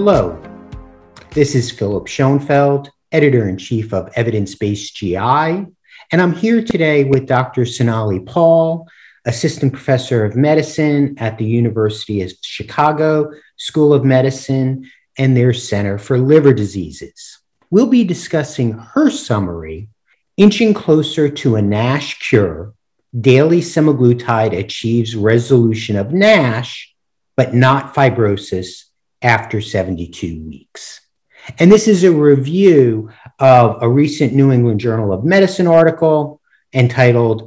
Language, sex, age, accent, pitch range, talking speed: English, male, 50-69, American, 110-155 Hz, 115 wpm